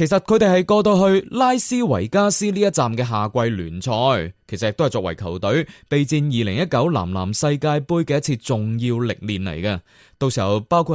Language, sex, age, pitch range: Chinese, male, 20-39, 110-170 Hz